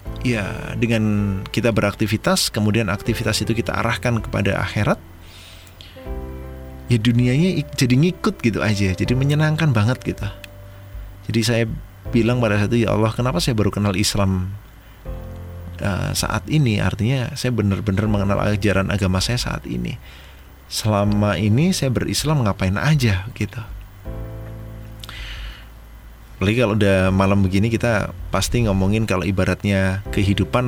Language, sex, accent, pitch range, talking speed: Indonesian, male, native, 95-115 Hz, 125 wpm